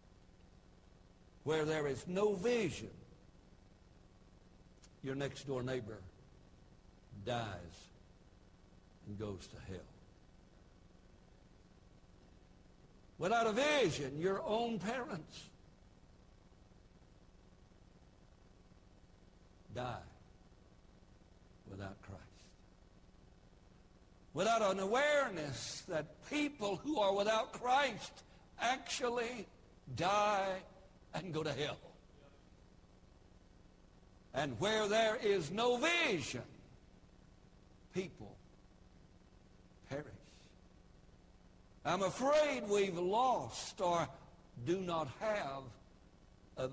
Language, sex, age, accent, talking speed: English, male, 60-79, American, 70 wpm